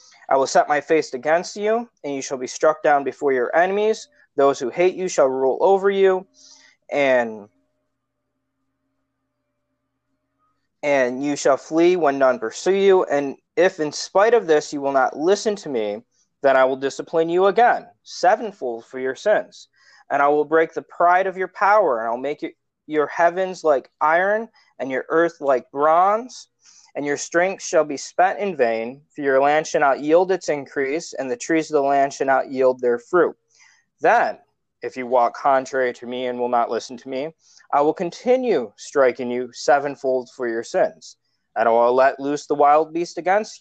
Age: 20-39